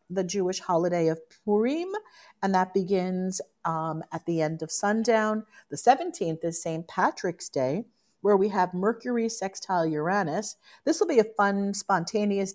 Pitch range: 165-215 Hz